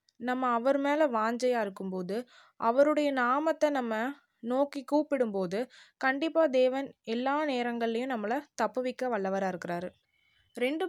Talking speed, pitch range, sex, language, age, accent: 110 wpm, 210-275 Hz, female, Tamil, 20-39, native